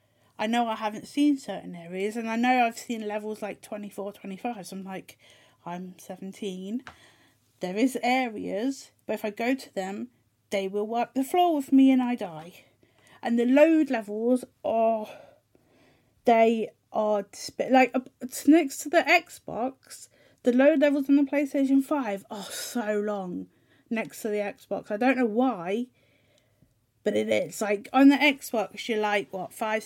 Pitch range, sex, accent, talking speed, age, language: 195-260 Hz, female, British, 170 wpm, 30-49, English